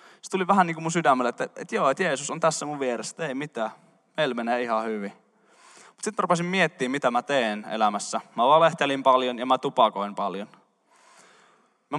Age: 20-39